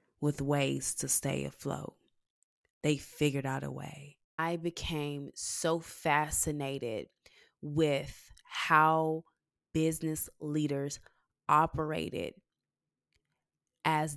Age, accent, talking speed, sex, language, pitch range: 20-39, American, 85 wpm, female, English, 140-160 Hz